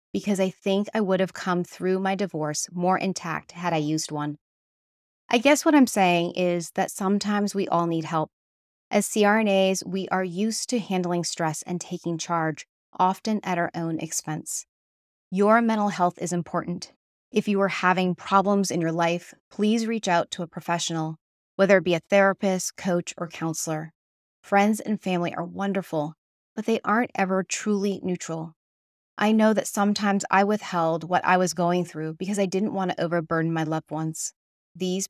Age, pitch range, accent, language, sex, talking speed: 30-49, 165-200 Hz, American, English, female, 175 wpm